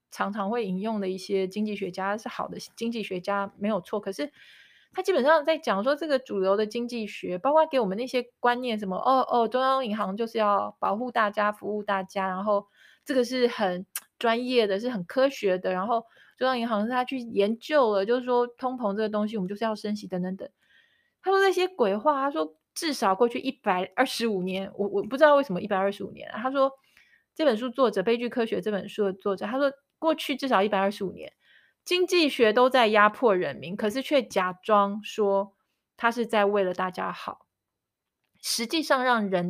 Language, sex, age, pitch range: Chinese, female, 20-39, 200-255 Hz